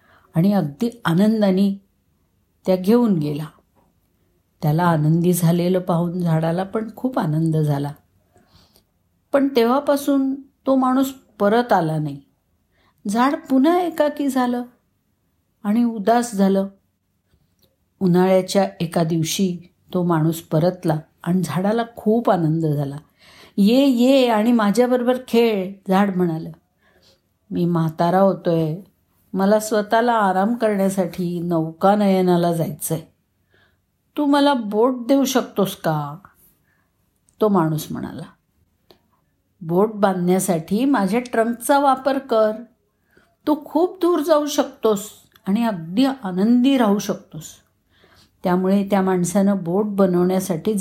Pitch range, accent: 165-235 Hz, native